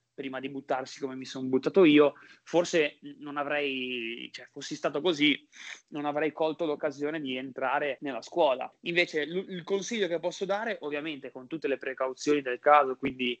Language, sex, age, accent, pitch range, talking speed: Italian, male, 20-39, native, 130-165 Hz, 170 wpm